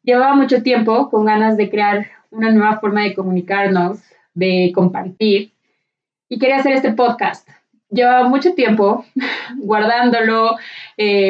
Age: 20-39